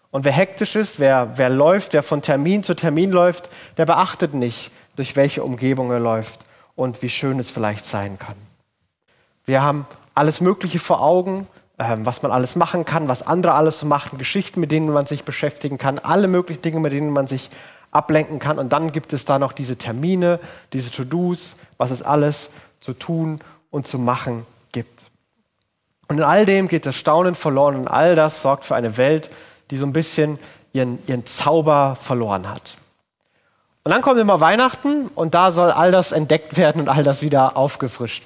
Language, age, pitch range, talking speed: German, 30-49, 135-170 Hz, 190 wpm